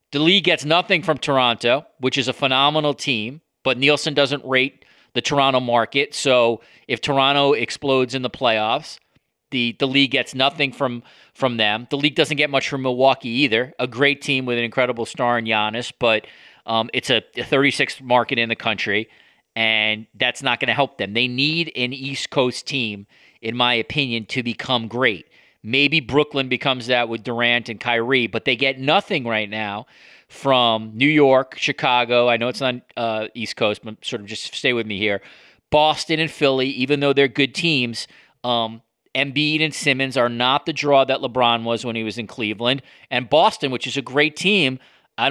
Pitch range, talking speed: 120-145 Hz, 190 wpm